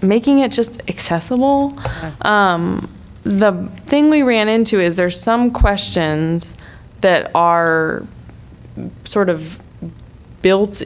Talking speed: 105 wpm